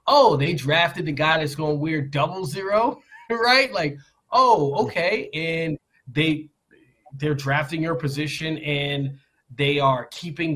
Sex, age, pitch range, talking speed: male, 30-49, 150-210 Hz, 130 wpm